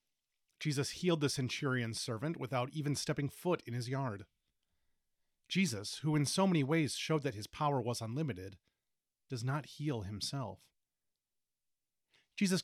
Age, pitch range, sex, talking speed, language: 30-49, 115-150 Hz, male, 140 wpm, English